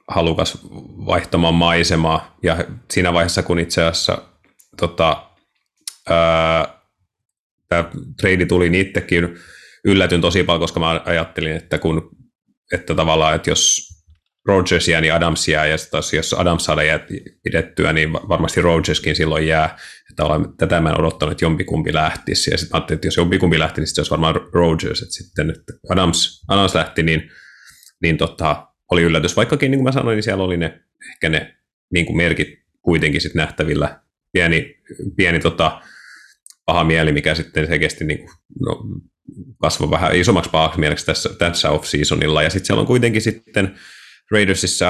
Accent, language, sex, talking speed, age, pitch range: native, Finnish, male, 160 wpm, 30-49, 80-90 Hz